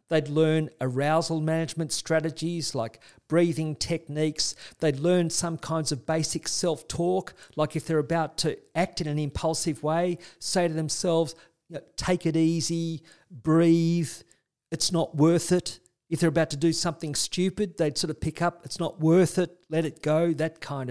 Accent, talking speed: Australian, 165 wpm